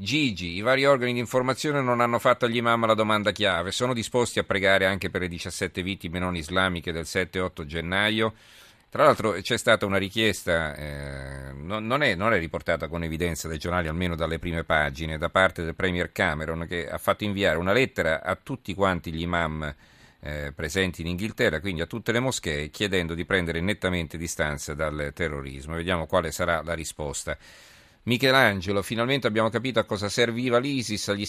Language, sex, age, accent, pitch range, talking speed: Italian, male, 50-69, native, 85-105 Hz, 180 wpm